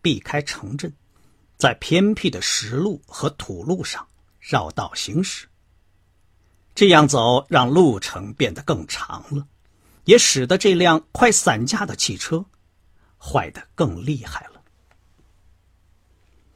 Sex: male